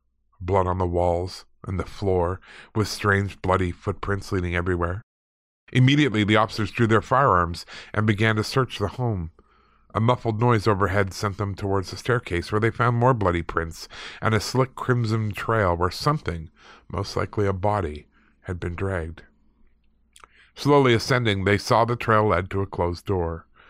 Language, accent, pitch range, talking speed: English, American, 90-115 Hz, 165 wpm